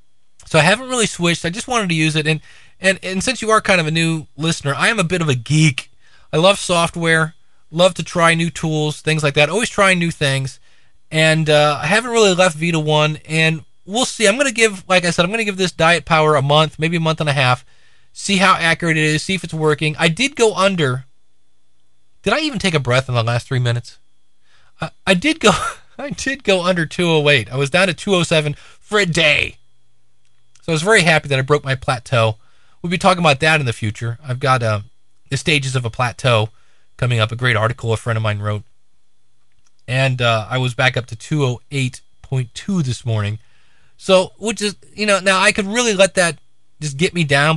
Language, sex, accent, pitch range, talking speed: English, male, American, 125-180 Hz, 225 wpm